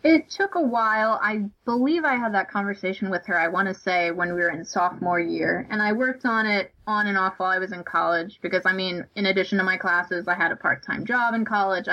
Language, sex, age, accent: English, female, 20-39, American